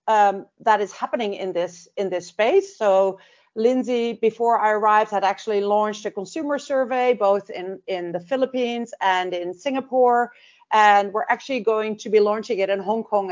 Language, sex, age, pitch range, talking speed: English, female, 40-59, 210-250 Hz, 175 wpm